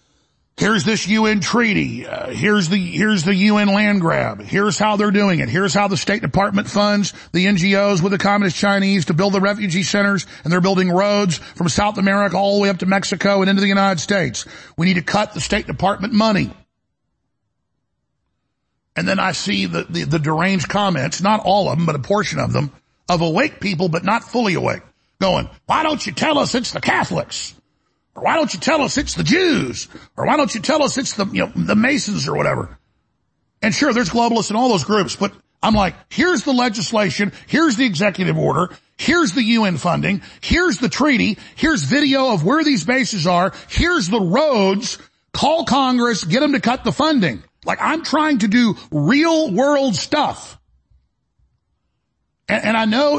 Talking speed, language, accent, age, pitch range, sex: 195 wpm, English, American, 50-69, 190-235 Hz, male